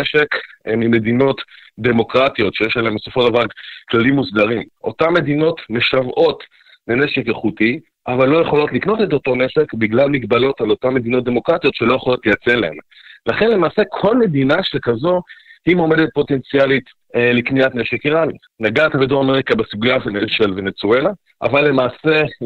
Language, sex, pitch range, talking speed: Hebrew, male, 125-155 Hz, 140 wpm